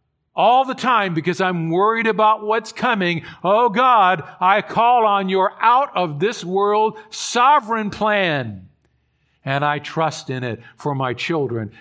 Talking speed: 145 wpm